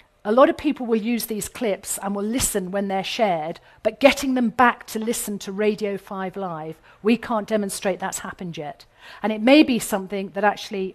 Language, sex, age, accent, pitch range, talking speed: English, female, 40-59, British, 190-245 Hz, 205 wpm